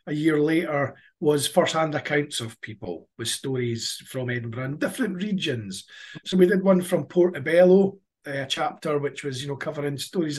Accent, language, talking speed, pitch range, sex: British, English, 170 wpm, 140-175 Hz, male